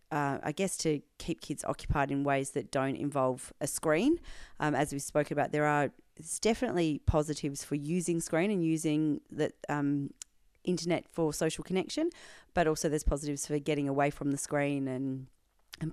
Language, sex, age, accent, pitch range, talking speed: English, female, 30-49, Australian, 140-160 Hz, 175 wpm